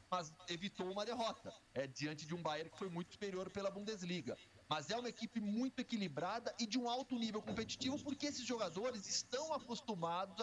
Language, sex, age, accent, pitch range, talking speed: Portuguese, male, 40-59, Brazilian, 155-220 Hz, 185 wpm